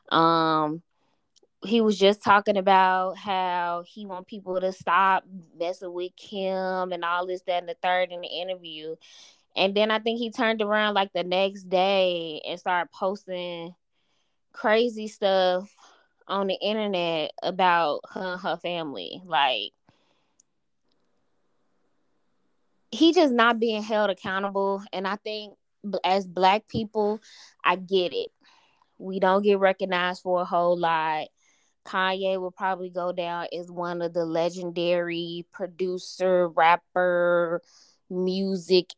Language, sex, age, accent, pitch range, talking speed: English, female, 10-29, American, 175-205 Hz, 130 wpm